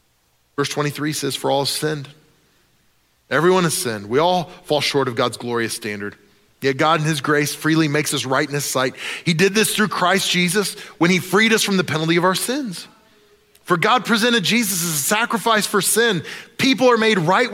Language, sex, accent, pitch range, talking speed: English, male, American, 145-210 Hz, 200 wpm